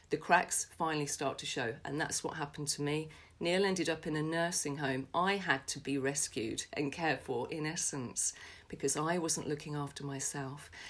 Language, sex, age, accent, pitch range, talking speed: English, female, 40-59, British, 145-165 Hz, 195 wpm